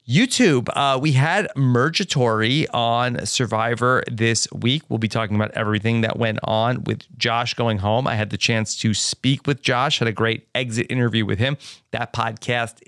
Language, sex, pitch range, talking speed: English, male, 120-160 Hz, 175 wpm